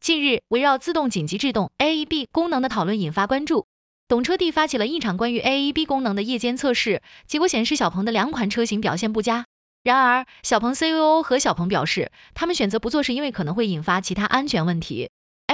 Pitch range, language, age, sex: 205-290 Hz, Chinese, 20-39, female